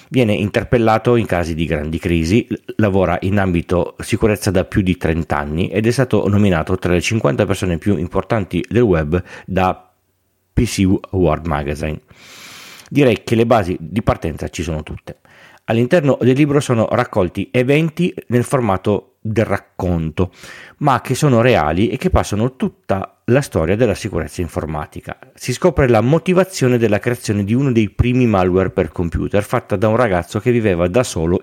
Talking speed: 160 wpm